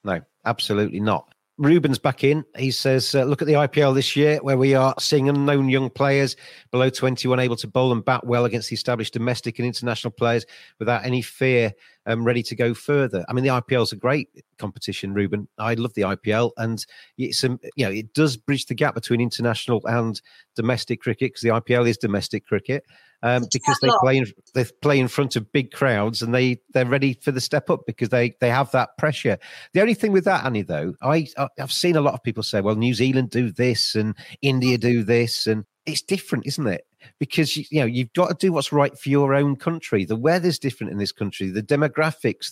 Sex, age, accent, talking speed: male, 40-59, British, 220 wpm